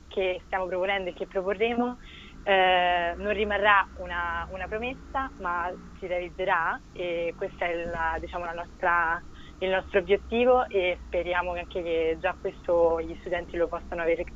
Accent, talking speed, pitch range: native, 135 wpm, 175-200 Hz